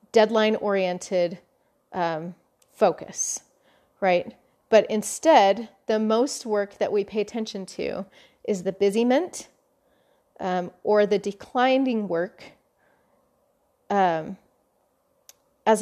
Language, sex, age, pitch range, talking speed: English, female, 30-49, 190-225 Hz, 85 wpm